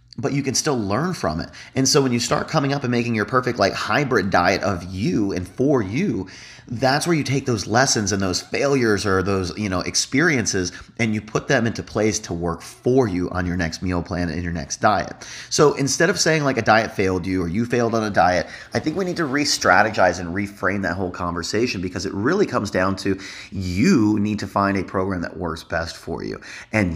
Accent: American